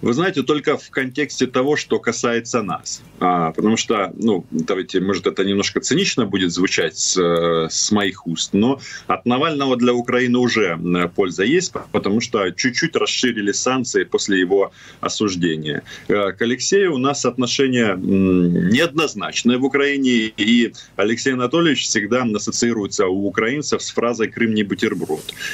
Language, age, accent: Russian, 30-49, native